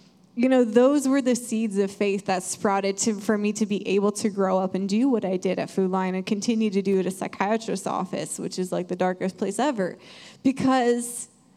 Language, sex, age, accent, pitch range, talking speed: English, female, 20-39, American, 210-260 Hz, 225 wpm